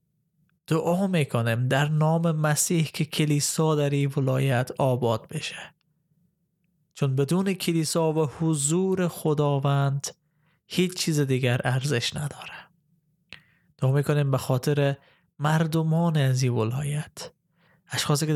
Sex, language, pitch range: male, Persian, 135-160 Hz